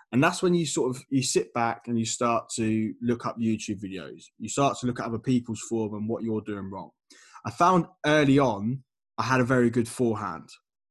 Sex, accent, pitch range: male, British, 115-145 Hz